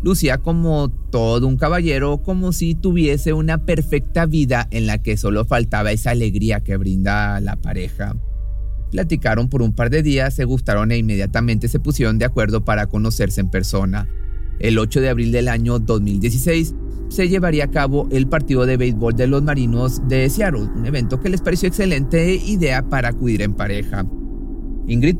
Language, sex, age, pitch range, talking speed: Spanish, male, 30-49, 105-145 Hz, 170 wpm